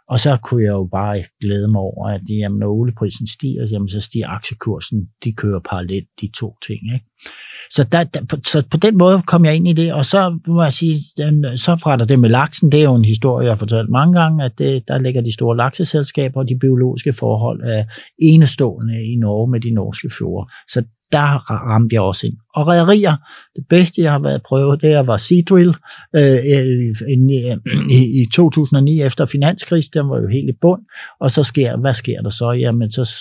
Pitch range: 115-150 Hz